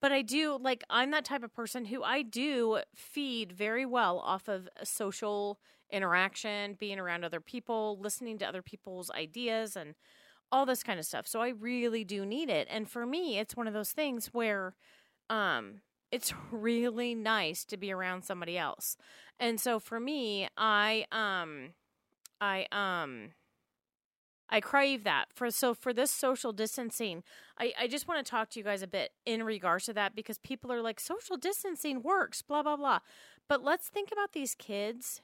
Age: 30-49